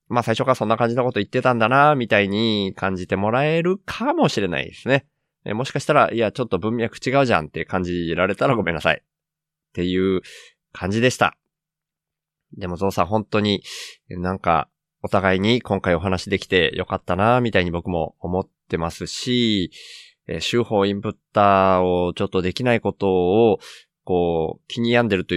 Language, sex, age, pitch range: Japanese, male, 20-39, 95-120 Hz